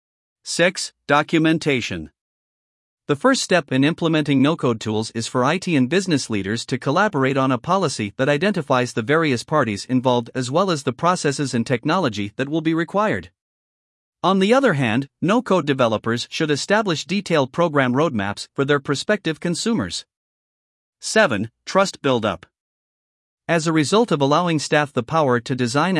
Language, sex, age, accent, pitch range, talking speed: English, male, 50-69, American, 125-170 Hz, 150 wpm